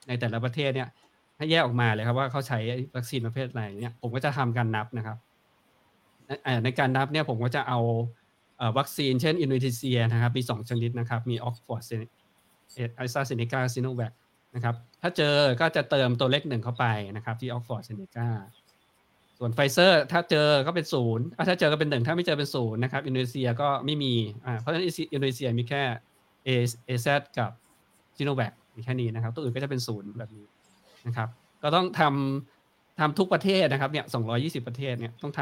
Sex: male